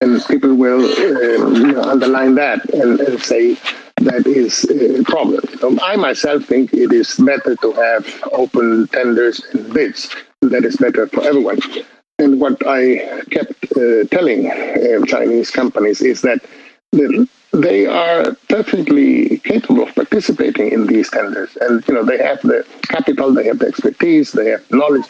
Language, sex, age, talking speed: English, male, 60-79, 160 wpm